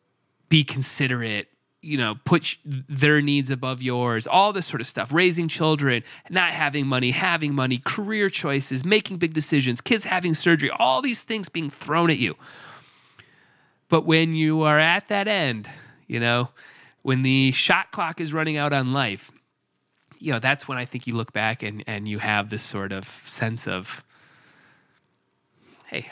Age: 30-49